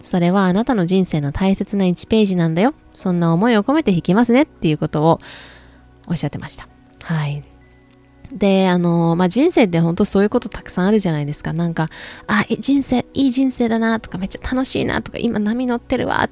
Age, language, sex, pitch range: 20-39, Japanese, female, 165-230 Hz